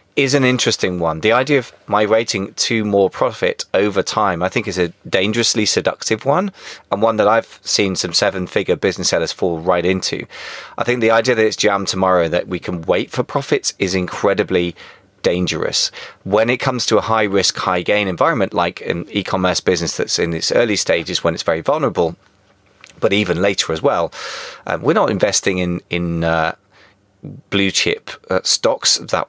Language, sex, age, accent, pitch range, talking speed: English, male, 30-49, British, 90-115 Hz, 185 wpm